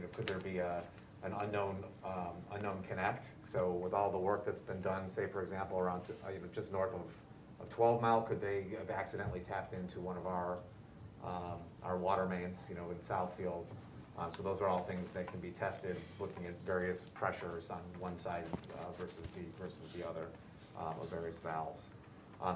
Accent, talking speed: American, 195 wpm